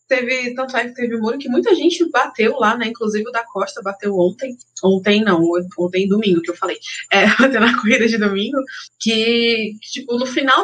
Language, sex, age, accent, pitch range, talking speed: Portuguese, female, 20-39, Brazilian, 185-240 Hz, 185 wpm